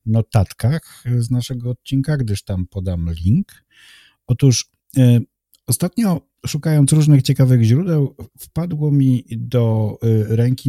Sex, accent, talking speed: male, native, 100 wpm